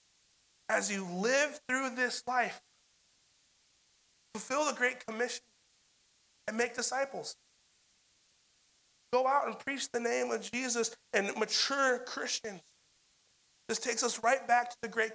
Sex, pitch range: male, 190-245 Hz